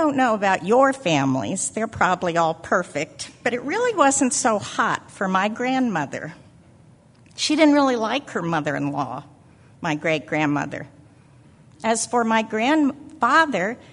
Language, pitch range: English, 150-240 Hz